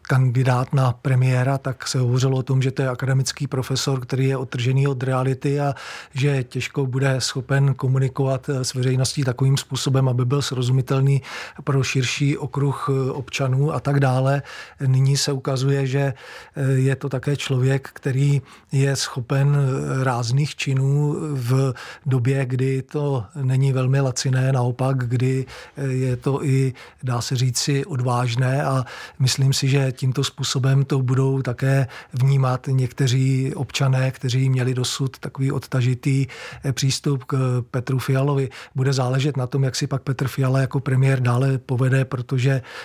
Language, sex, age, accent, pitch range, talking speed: Czech, male, 40-59, native, 130-140 Hz, 145 wpm